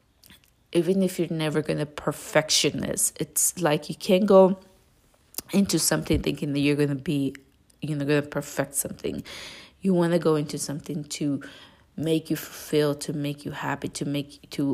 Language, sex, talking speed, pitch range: English, female, 165 wpm, 140-160 Hz